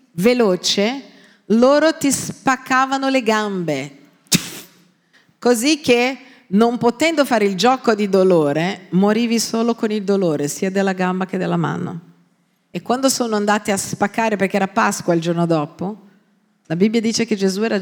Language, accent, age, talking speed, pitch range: Italian, native, 40-59, 150 wpm, 180-250 Hz